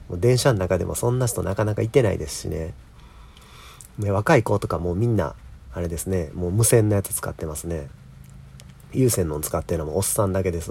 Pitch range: 80-115 Hz